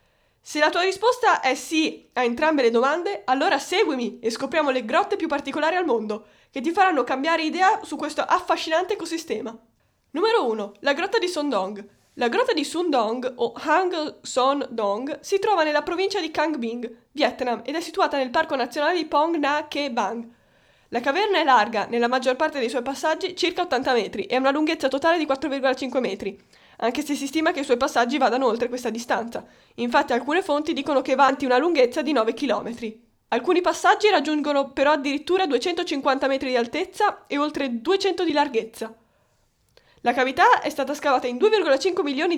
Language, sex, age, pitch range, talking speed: Italian, female, 10-29, 250-325 Hz, 185 wpm